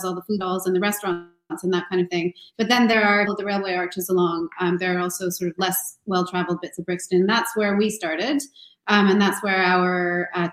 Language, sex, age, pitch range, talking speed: English, female, 30-49, 180-205 Hz, 235 wpm